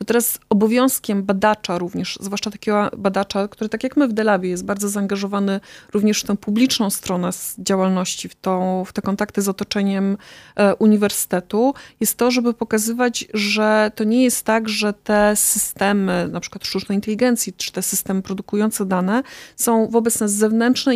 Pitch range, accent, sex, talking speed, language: 195-230 Hz, native, female, 160 wpm, Polish